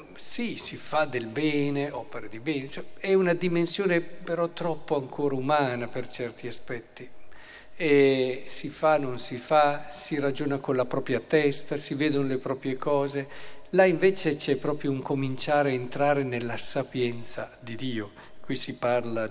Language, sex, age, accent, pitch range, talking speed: Italian, male, 50-69, native, 125-165 Hz, 150 wpm